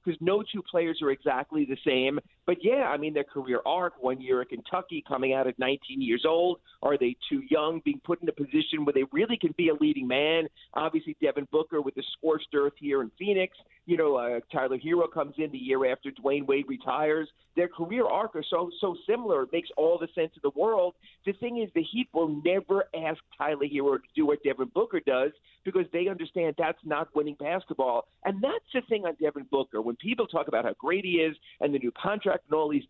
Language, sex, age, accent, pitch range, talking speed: English, male, 50-69, American, 140-190 Hz, 230 wpm